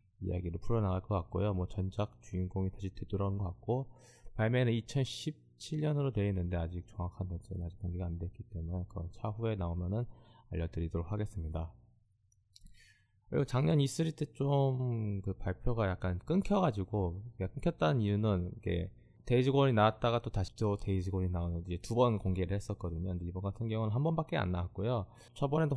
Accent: native